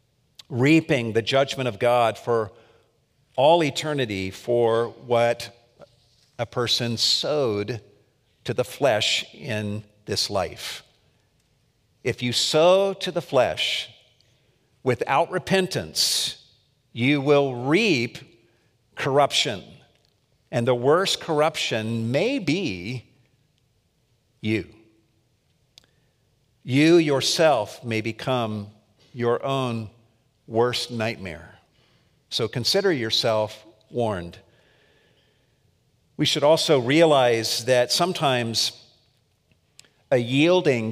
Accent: American